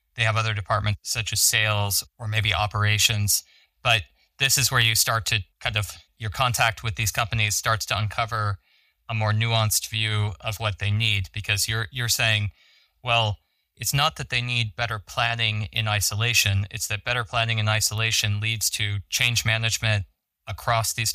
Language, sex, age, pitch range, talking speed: English, male, 20-39, 100-115 Hz, 175 wpm